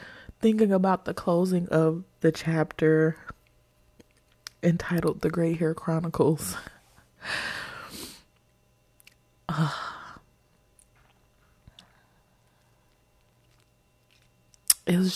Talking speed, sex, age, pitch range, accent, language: 55 wpm, female, 20-39, 150-205 Hz, American, English